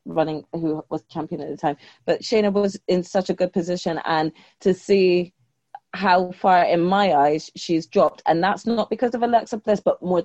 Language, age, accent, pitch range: English, 20-39, British, 160-185 Hz